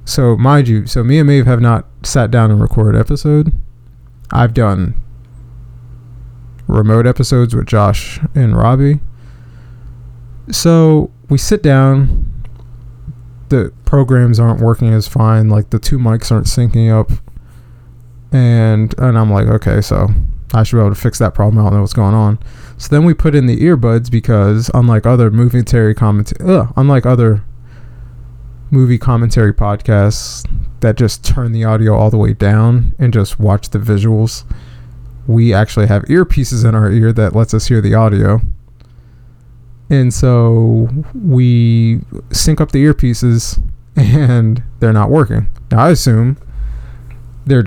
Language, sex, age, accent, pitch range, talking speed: English, male, 20-39, American, 110-125 Hz, 150 wpm